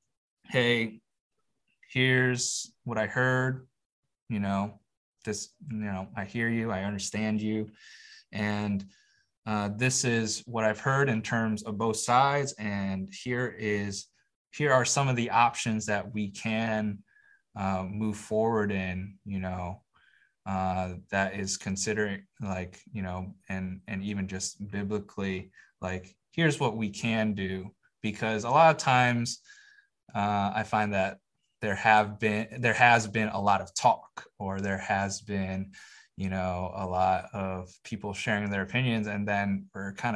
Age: 20-39